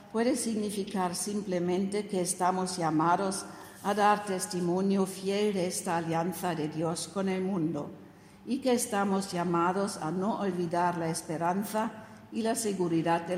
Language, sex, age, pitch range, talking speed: German, female, 60-79, 170-200 Hz, 140 wpm